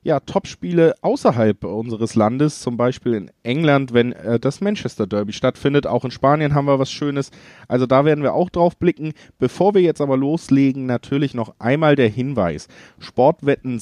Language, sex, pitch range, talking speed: German, male, 115-140 Hz, 175 wpm